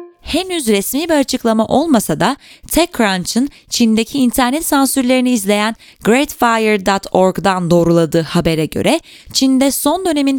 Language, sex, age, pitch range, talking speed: Turkish, female, 20-39, 190-270 Hz, 105 wpm